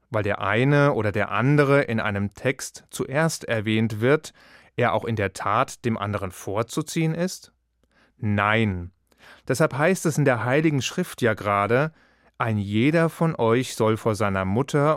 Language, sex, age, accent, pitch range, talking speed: German, male, 30-49, German, 110-145 Hz, 155 wpm